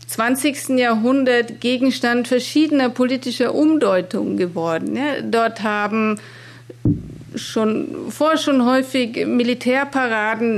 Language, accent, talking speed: German, German, 80 wpm